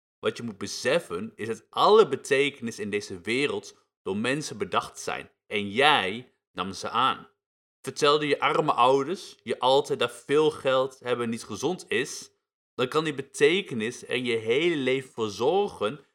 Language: Dutch